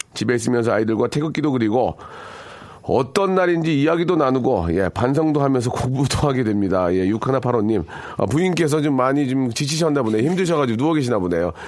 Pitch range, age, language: 110-155 Hz, 40-59, Korean